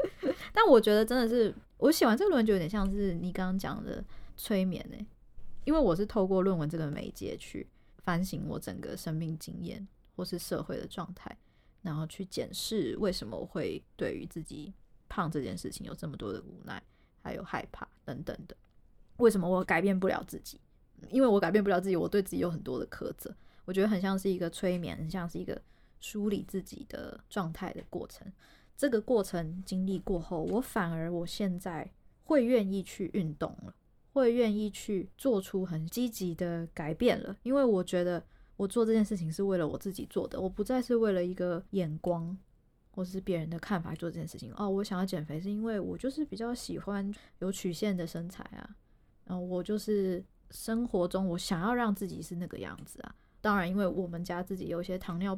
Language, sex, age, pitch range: Chinese, female, 20-39, 175-210 Hz